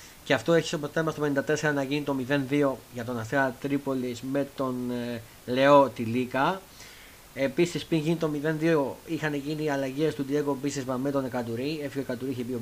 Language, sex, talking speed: Greek, male, 185 wpm